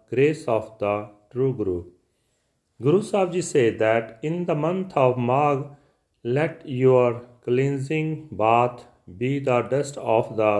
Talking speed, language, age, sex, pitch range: 130 wpm, Punjabi, 40-59, male, 115-140 Hz